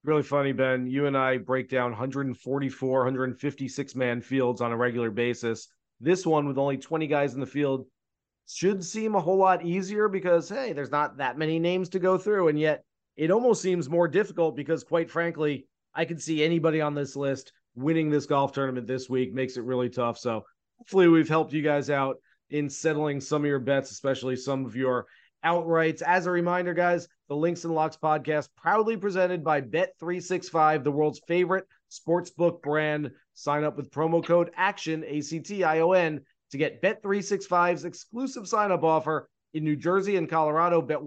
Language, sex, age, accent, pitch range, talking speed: English, male, 30-49, American, 140-170 Hz, 185 wpm